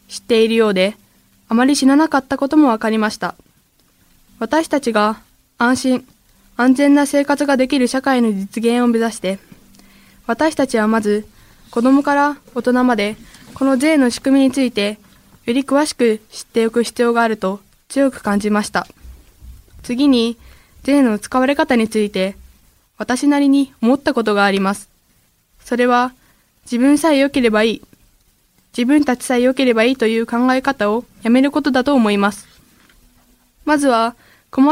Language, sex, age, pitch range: Japanese, female, 20-39, 225-270 Hz